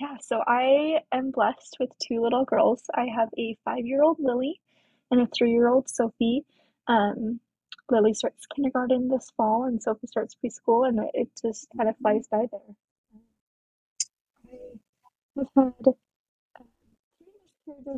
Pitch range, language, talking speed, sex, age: 220-255 Hz, English, 145 wpm, female, 20-39